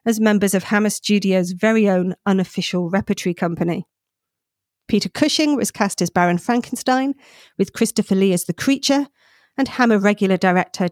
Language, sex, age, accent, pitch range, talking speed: English, female, 40-59, British, 185-220 Hz, 150 wpm